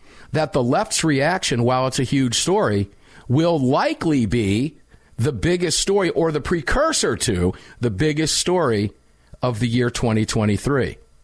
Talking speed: 140 wpm